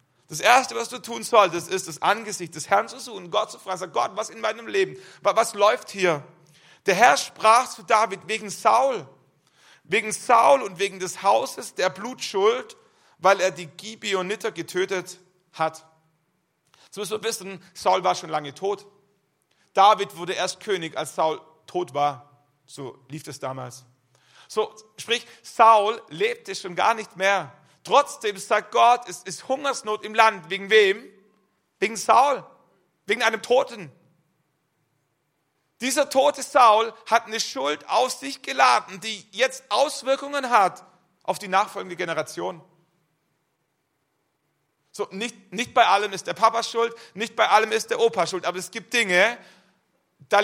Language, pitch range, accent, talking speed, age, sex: German, 175-225 Hz, German, 150 wpm, 40-59, male